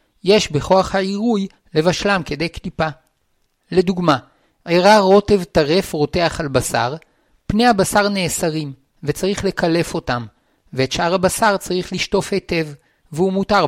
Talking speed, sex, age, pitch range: 120 wpm, male, 50-69, 150-195 Hz